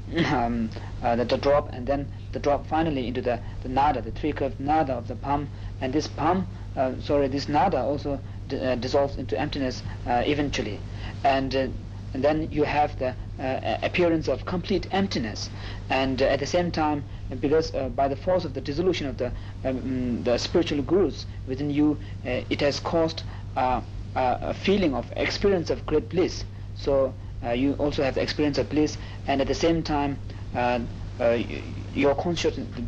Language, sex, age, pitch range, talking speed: Italian, male, 50-69, 100-145 Hz, 185 wpm